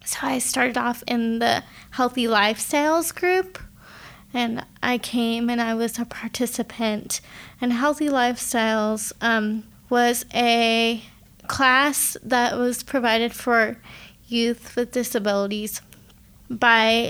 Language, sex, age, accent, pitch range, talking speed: English, female, 20-39, American, 230-255 Hz, 110 wpm